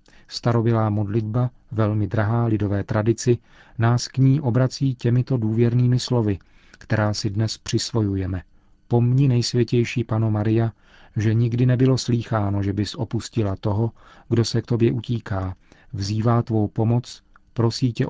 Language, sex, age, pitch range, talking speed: Czech, male, 40-59, 105-125 Hz, 125 wpm